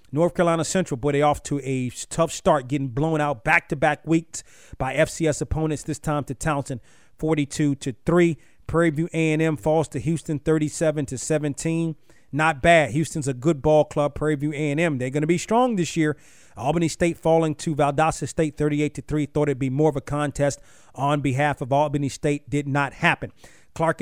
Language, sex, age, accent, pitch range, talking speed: English, male, 30-49, American, 140-160 Hz, 175 wpm